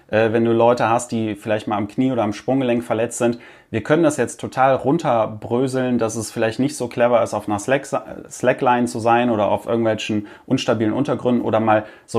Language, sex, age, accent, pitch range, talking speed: German, male, 30-49, German, 105-125 Hz, 195 wpm